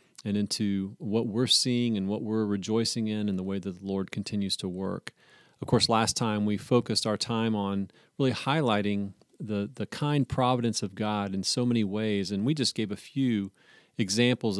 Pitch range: 100-125 Hz